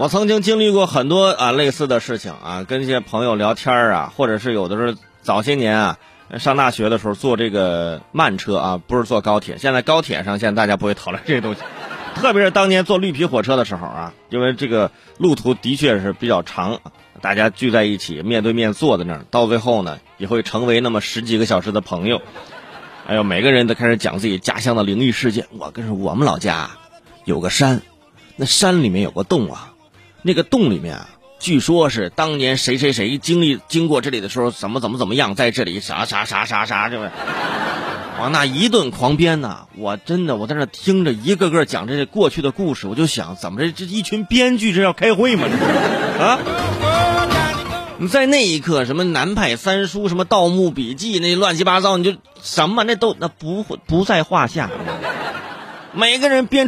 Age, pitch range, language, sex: 20-39, 115-190 Hz, Chinese, male